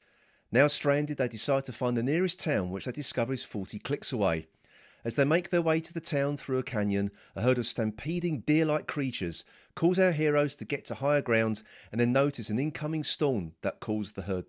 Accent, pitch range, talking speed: British, 110-155 Hz, 210 wpm